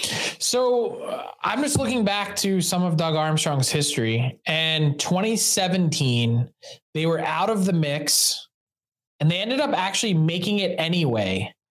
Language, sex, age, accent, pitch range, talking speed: English, male, 20-39, American, 145-185 Hz, 145 wpm